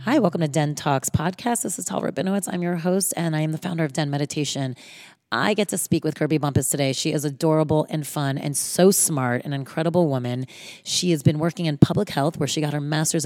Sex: female